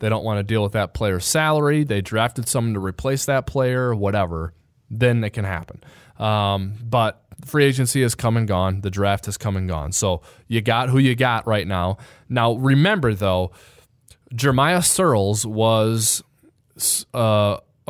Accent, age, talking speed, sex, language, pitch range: American, 20-39, 170 wpm, male, English, 100-125 Hz